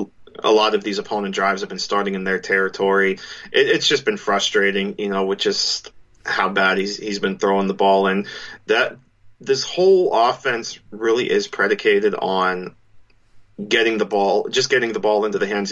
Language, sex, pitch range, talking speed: English, male, 100-135 Hz, 185 wpm